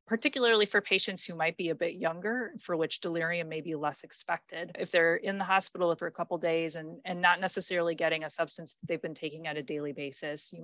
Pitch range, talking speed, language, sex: 160-190 Hz, 230 wpm, English, female